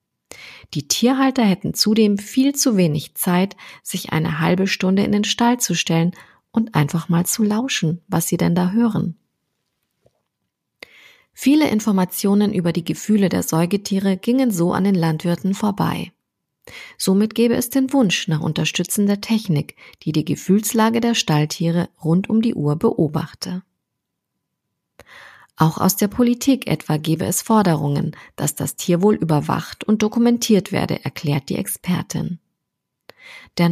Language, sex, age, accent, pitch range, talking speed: German, female, 30-49, German, 165-220 Hz, 135 wpm